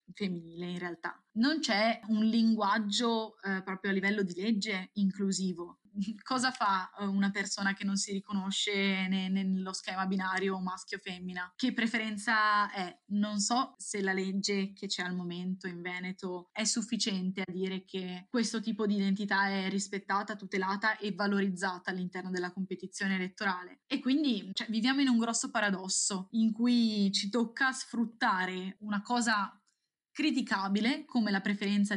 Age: 20-39